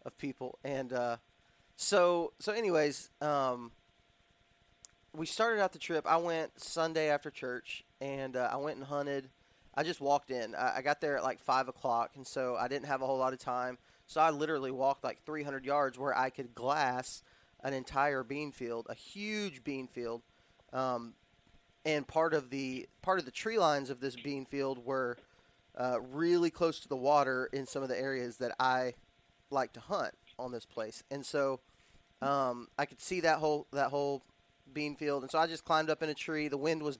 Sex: male